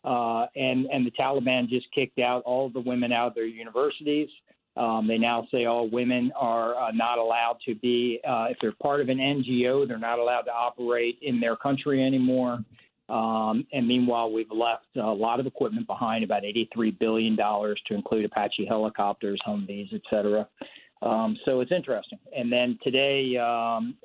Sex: male